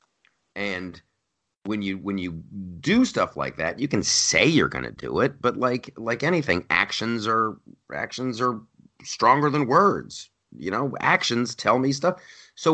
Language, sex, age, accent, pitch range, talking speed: English, male, 30-49, American, 100-145 Hz, 165 wpm